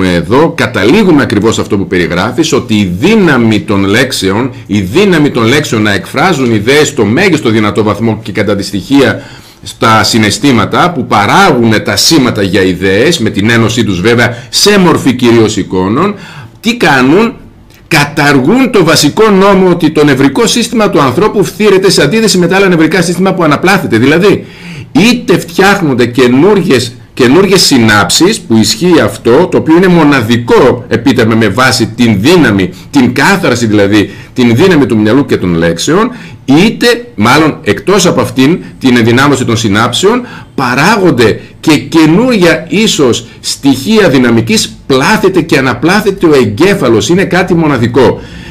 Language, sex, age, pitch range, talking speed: Greek, male, 50-69, 110-175 Hz, 140 wpm